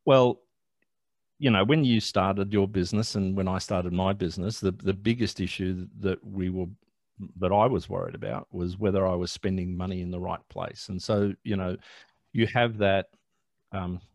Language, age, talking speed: English, 50-69, 185 wpm